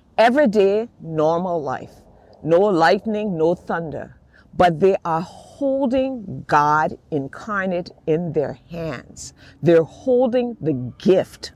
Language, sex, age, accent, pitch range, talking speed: English, female, 50-69, American, 170-260 Hz, 105 wpm